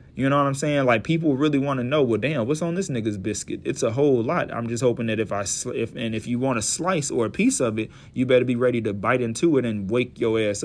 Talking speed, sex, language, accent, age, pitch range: 295 wpm, male, English, American, 30-49, 115-150 Hz